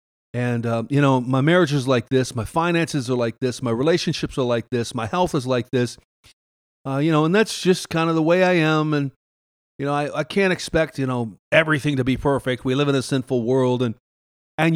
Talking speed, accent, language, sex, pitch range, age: 230 wpm, American, English, male, 125-175 Hz, 40-59